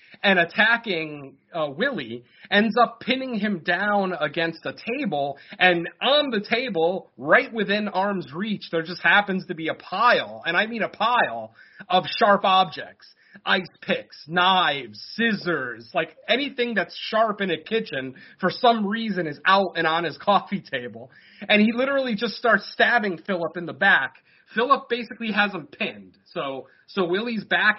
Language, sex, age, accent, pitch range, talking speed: English, male, 30-49, American, 160-215 Hz, 160 wpm